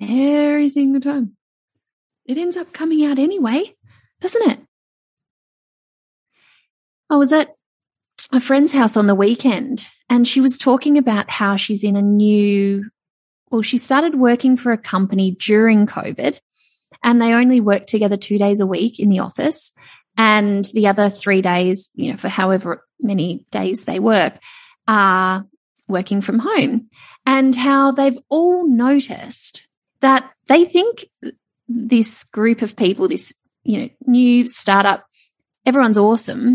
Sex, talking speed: female, 145 wpm